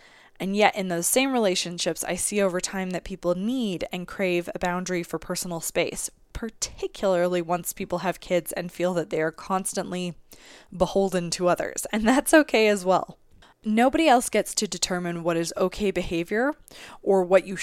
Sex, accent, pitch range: female, American, 175-220 Hz